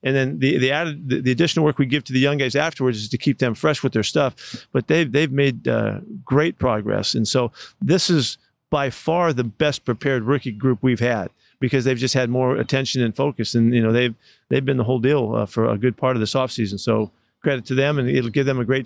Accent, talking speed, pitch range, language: American, 250 wpm, 125-150 Hz, English